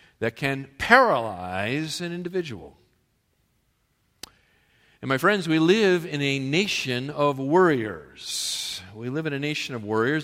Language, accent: English, American